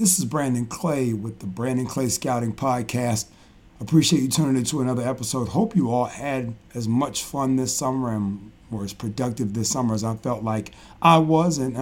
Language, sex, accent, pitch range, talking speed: English, male, American, 125-155 Hz, 195 wpm